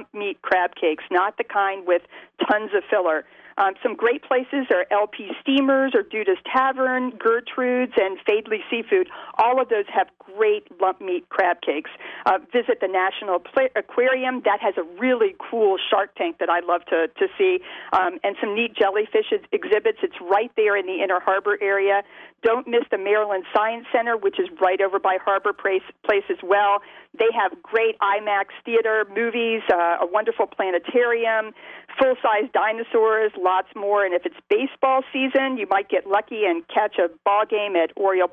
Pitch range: 195-280 Hz